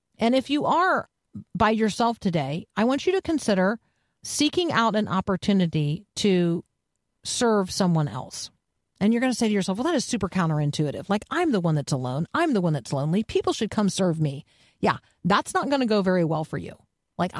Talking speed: 195 wpm